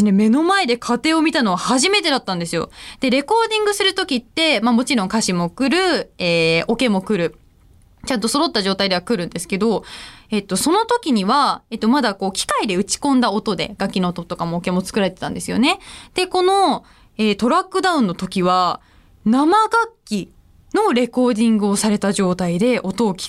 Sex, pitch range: female, 190-290 Hz